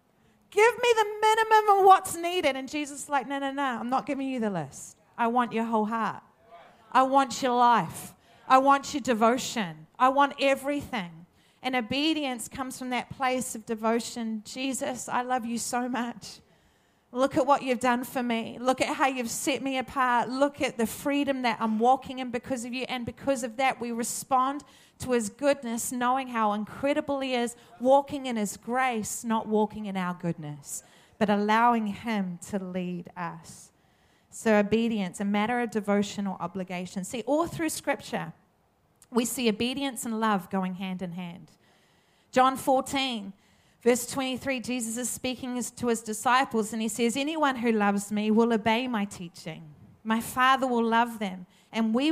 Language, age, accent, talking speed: English, 30-49, Australian, 175 wpm